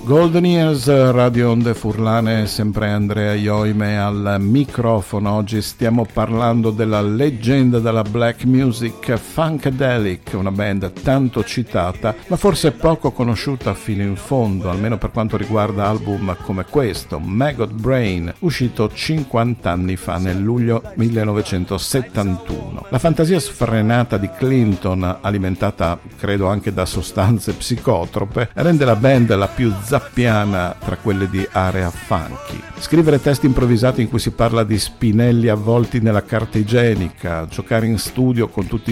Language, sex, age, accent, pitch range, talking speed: Italian, male, 50-69, native, 100-125 Hz, 130 wpm